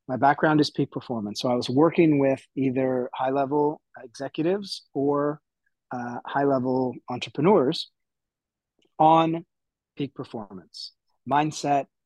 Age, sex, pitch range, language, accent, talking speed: 30-49, male, 130-160 Hz, English, American, 105 wpm